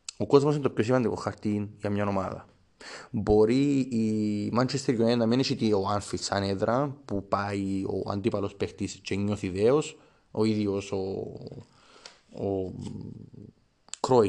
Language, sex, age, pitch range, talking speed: Greek, male, 30-49, 100-115 Hz, 120 wpm